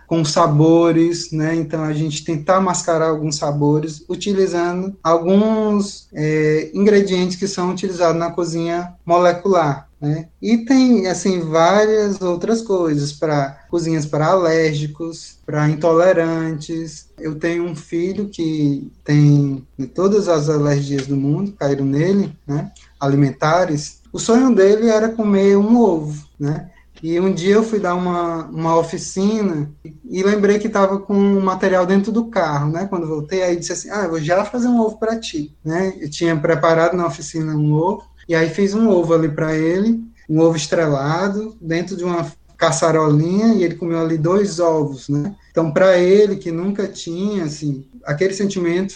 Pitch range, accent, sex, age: 155-195 Hz, Brazilian, male, 20-39